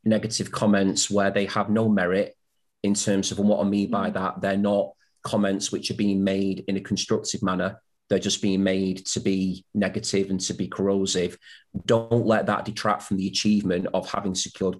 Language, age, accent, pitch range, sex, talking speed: English, 30-49, British, 95-105 Hz, male, 190 wpm